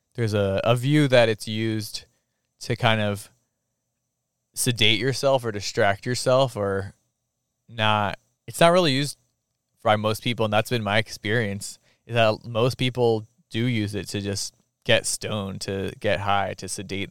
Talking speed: 160 wpm